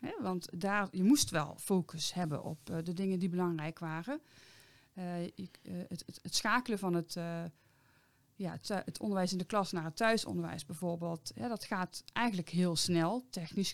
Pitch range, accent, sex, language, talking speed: 170-210 Hz, Dutch, female, Dutch, 150 wpm